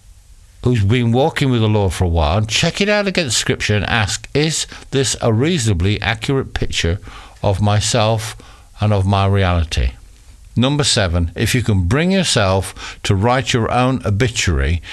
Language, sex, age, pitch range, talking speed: English, male, 60-79, 90-125 Hz, 165 wpm